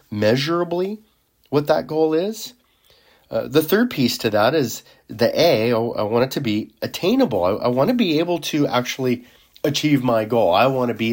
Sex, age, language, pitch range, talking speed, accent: male, 30-49, English, 105-145 Hz, 195 wpm, American